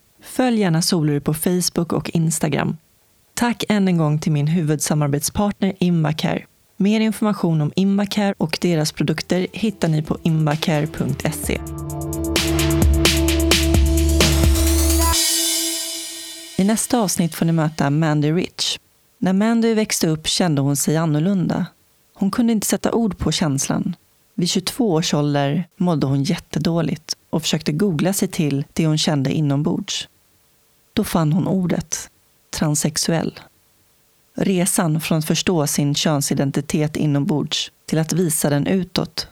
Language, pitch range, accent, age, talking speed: Swedish, 150-195 Hz, native, 30-49, 130 wpm